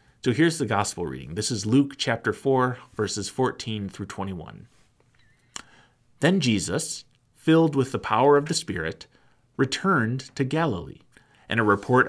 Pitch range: 110-145 Hz